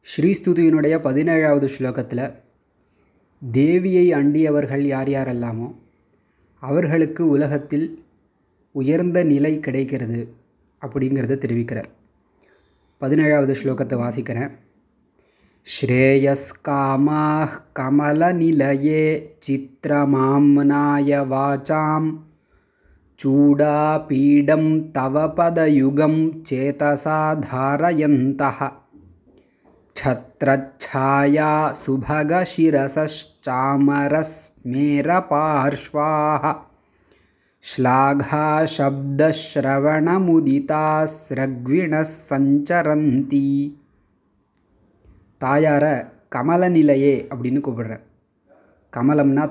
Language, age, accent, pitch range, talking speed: Tamil, 20-39, native, 130-155 Hz, 40 wpm